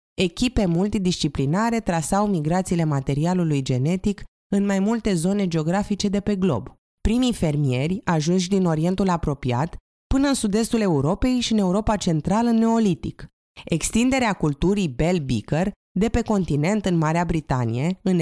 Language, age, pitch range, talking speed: Romanian, 20-39, 155-210 Hz, 135 wpm